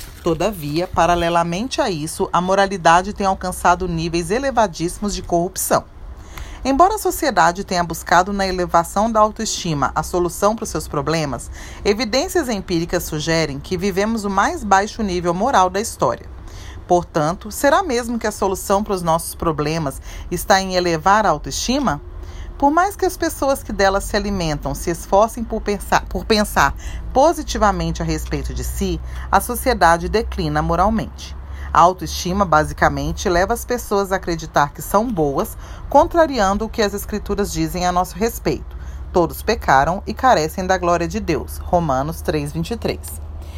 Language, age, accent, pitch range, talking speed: Portuguese, 40-59, Brazilian, 160-215 Hz, 145 wpm